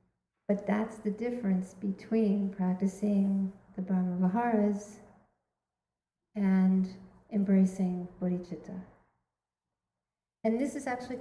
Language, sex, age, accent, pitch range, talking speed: English, female, 50-69, American, 190-220 Hz, 85 wpm